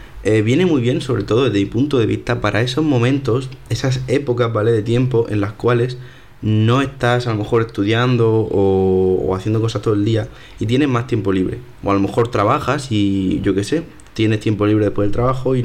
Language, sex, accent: Spanish, male, Spanish